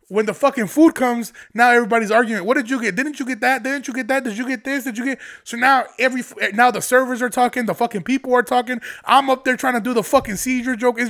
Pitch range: 190-245 Hz